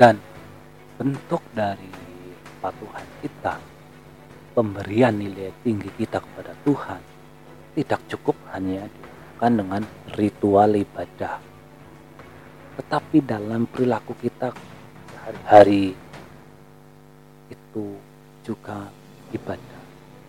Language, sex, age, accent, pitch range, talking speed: Indonesian, male, 40-59, native, 100-125 Hz, 75 wpm